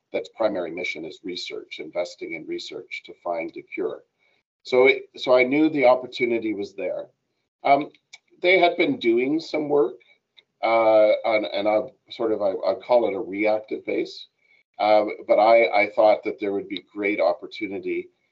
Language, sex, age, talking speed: English, male, 40-59, 170 wpm